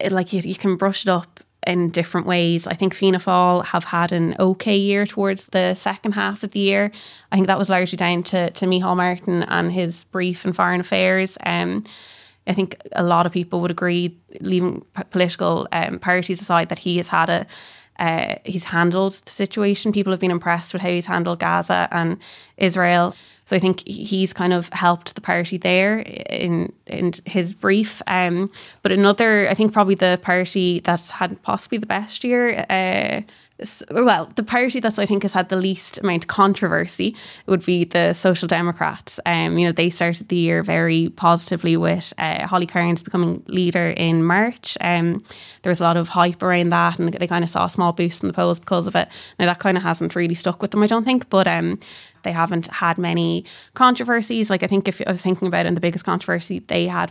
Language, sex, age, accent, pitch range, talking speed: English, female, 20-39, Irish, 175-195 Hz, 210 wpm